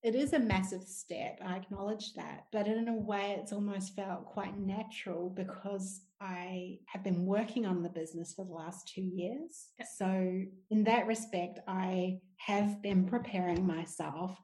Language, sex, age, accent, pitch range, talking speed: English, female, 30-49, Australian, 180-205 Hz, 160 wpm